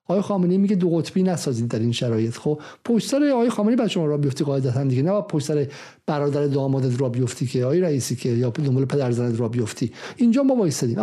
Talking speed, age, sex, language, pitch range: 205 wpm, 50-69, male, Persian, 145-200 Hz